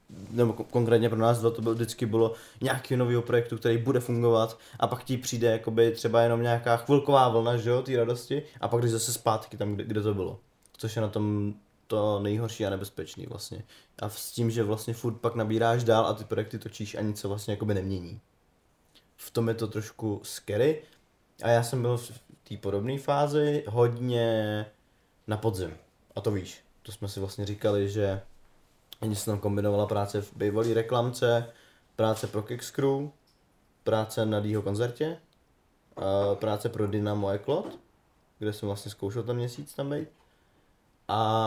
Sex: male